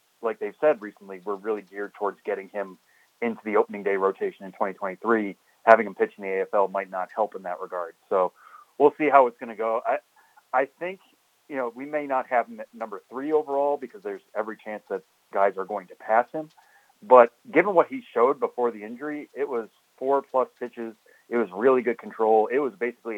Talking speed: 210 wpm